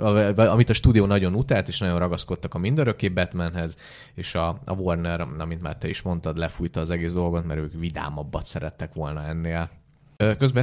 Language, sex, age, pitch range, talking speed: Hungarian, male, 20-39, 90-105 Hz, 170 wpm